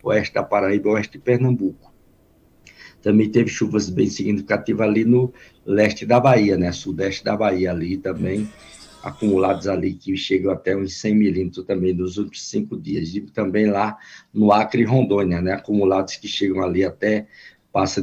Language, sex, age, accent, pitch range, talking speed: Portuguese, male, 50-69, Brazilian, 95-125 Hz, 165 wpm